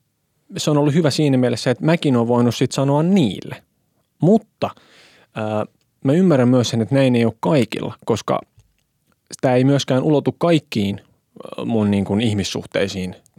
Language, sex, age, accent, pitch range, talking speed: Finnish, male, 20-39, native, 110-135 Hz, 155 wpm